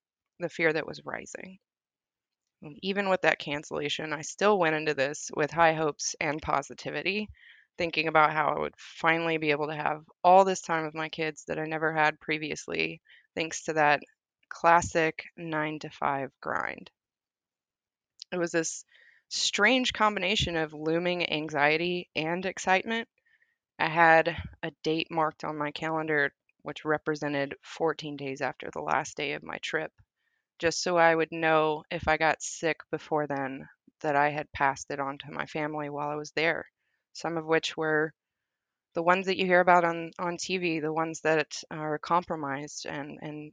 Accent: American